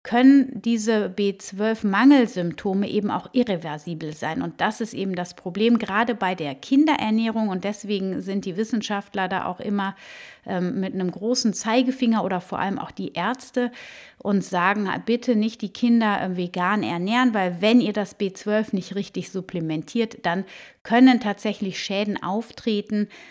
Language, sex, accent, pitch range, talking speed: German, female, German, 190-245 Hz, 145 wpm